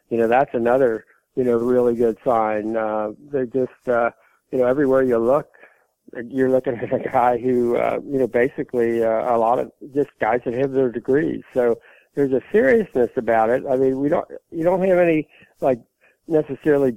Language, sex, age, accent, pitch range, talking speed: English, male, 60-79, American, 115-135 Hz, 190 wpm